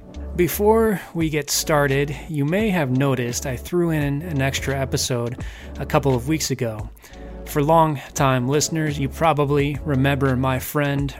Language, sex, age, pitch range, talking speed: English, male, 30-49, 125-155 Hz, 145 wpm